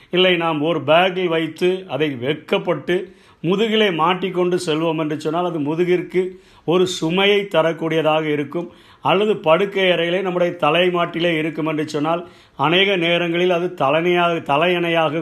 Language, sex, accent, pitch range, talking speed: Tamil, male, native, 145-180 Hz, 120 wpm